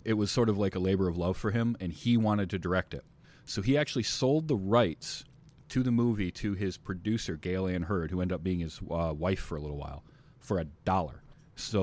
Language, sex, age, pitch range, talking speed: English, male, 30-49, 95-120 Hz, 240 wpm